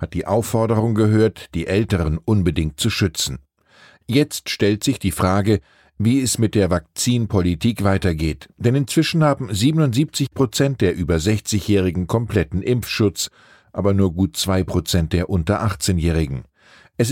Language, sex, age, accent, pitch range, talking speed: German, male, 50-69, German, 90-120 Hz, 135 wpm